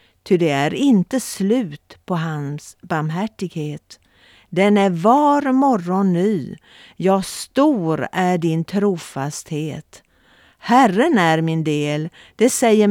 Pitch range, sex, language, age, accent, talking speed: 155-210 Hz, female, Swedish, 50-69, native, 110 wpm